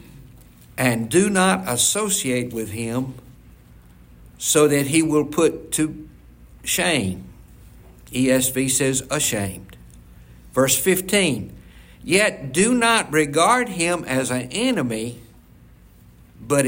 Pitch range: 100-140 Hz